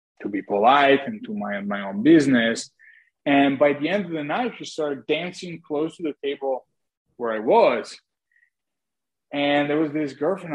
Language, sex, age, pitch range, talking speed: English, male, 20-39, 125-160 Hz, 175 wpm